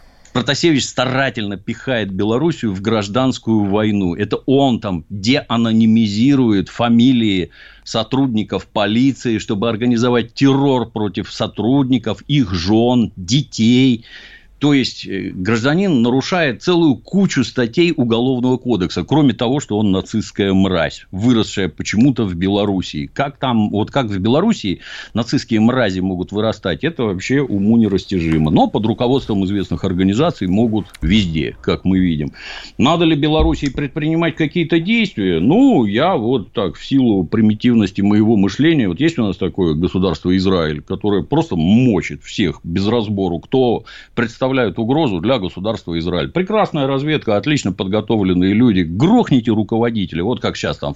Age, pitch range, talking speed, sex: 50-69, 95-135 Hz, 125 wpm, male